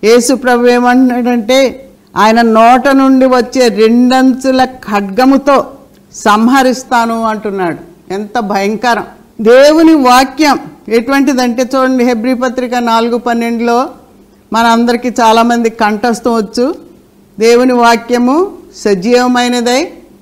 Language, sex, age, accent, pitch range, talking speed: Telugu, female, 50-69, native, 230-265 Hz, 85 wpm